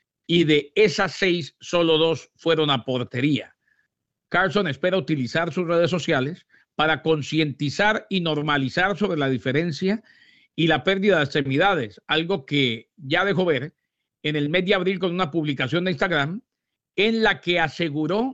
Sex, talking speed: male, 150 wpm